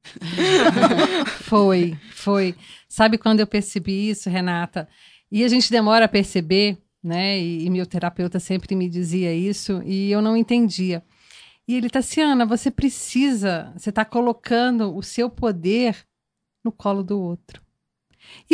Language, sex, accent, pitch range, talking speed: Portuguese, female, Brazilian, 200-255 Hz, 150 wpm